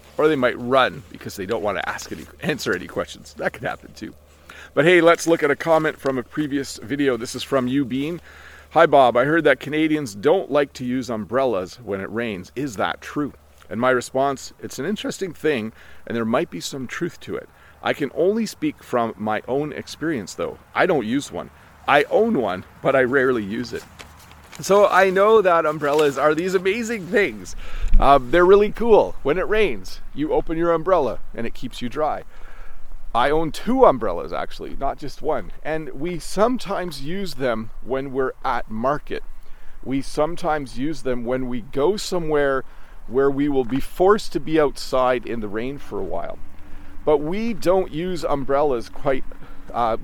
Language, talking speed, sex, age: English, 185 wpm, male, 40-59